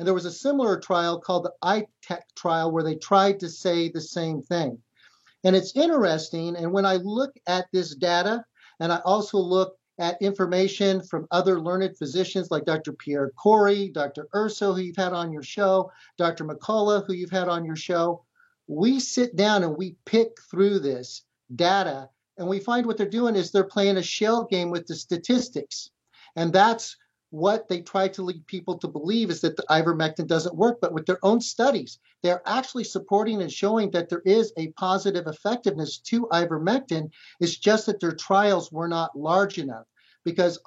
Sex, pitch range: male, 165-200 Hz